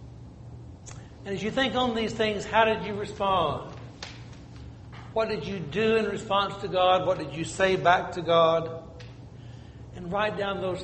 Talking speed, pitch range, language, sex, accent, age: 165 wpm, 145-200 Hz, English, male, American, 60-79